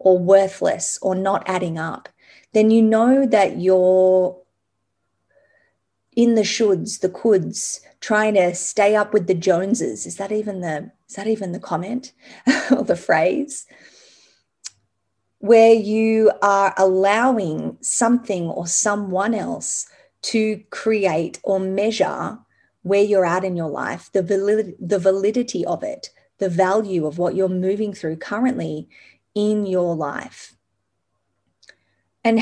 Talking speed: 130 wpm